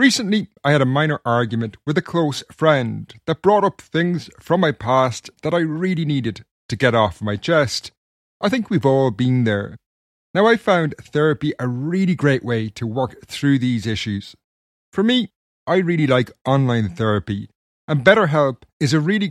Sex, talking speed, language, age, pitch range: male, 175 wpm, English, 30-49, 115-155 Hz